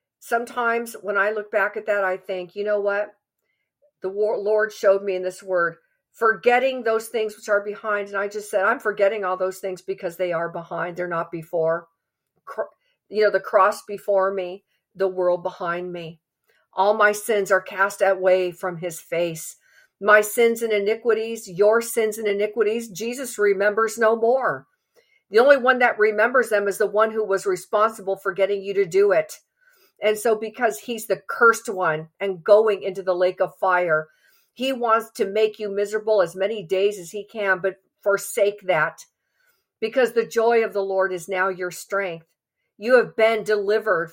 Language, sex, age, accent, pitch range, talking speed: English, female, 50-69, American, 190-225 Hz, 180 wpm